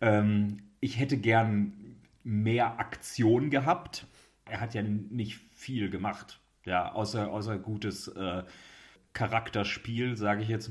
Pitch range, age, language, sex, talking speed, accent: 105-125 Hz, 30-49, German, male, 120 wpm, German